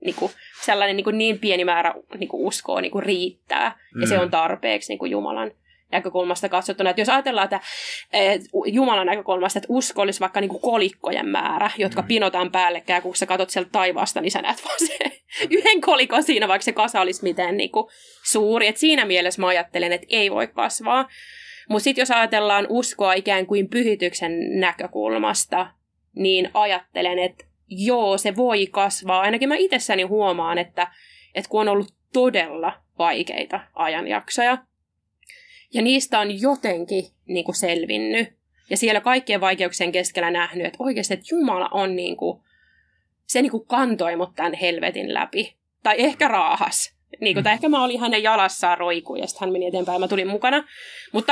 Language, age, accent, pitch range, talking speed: Finnish, 20-39, native, 180-245 Hz, 165 wpm